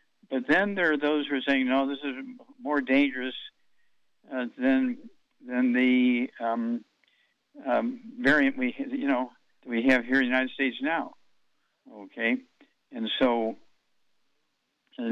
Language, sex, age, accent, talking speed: English, male, 60-79, American, 140 wpm